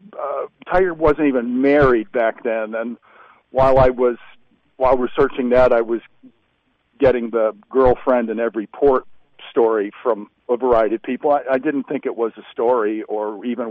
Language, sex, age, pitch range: English, male, 50-69, 115-135 Hz